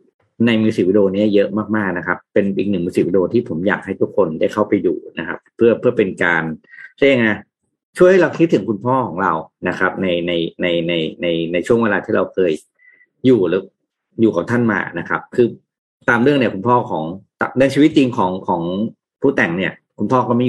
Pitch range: 90-125 Hz